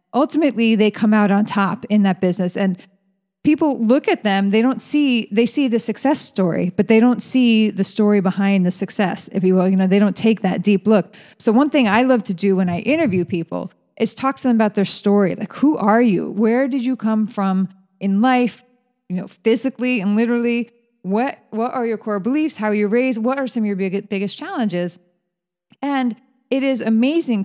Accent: American